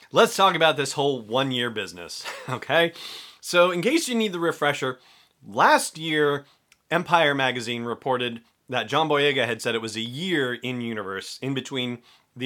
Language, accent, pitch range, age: English, American, 115-160 Hz, 30-49